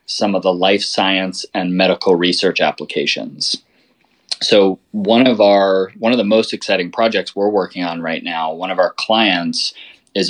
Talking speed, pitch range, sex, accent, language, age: 170 wpm, 95-110 Hz, male, American, English, 20-39